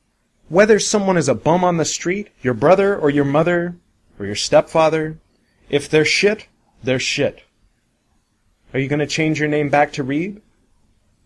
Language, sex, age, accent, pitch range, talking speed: English, male, 30-49, American, 95-130 Hz, 165 wpm